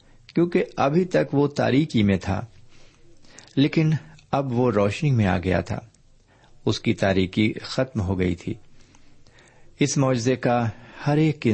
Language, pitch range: Urdu, 100-130 Hz